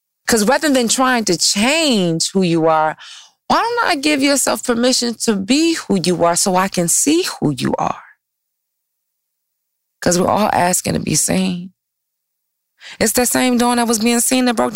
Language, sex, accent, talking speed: English, female, American, 180 wpm